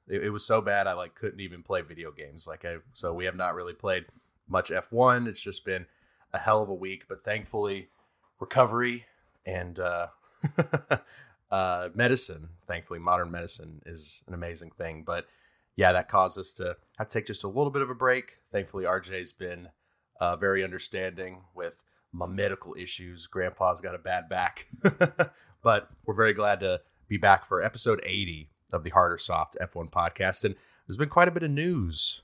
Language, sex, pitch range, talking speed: English, male, 85-105 Hz, 180 wpm